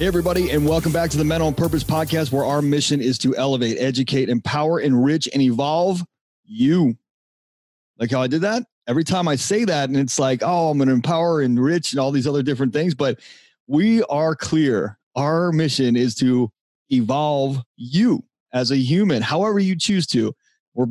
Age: 30-49